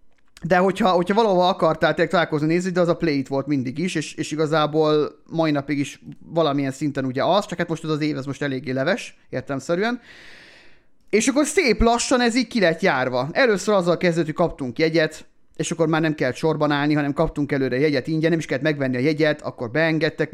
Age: 30-49